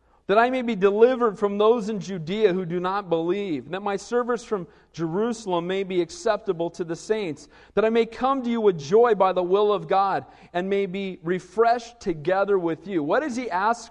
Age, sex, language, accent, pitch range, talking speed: 40-59, male, English, American, 180-235 Hz, 205 wpm